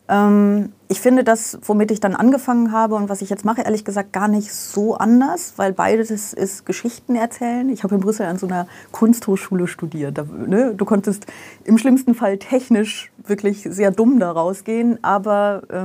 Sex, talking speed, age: female, 170 wpm, 30-49